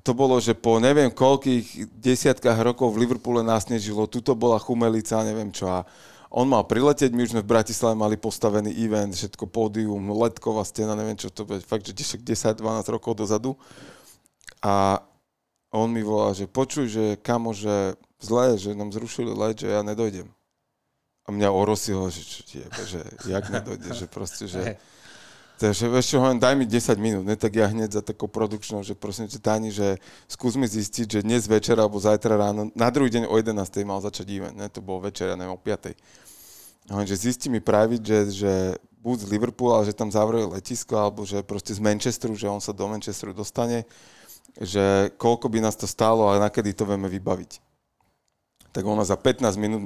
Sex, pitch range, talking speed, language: male, 100-115 Hz, 190 wpm, Slovak